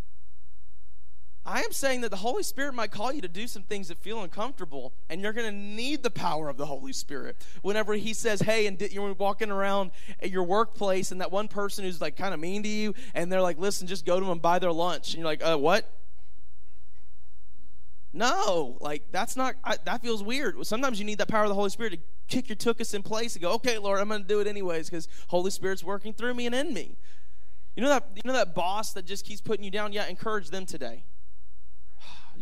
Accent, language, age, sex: American, English, 20-39, male